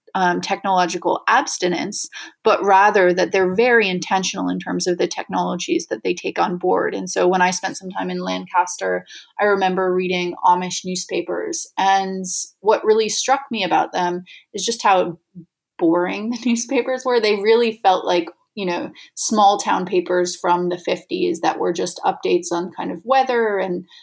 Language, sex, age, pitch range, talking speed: English, female, 30-49, 180-220 Hz, 170 wpm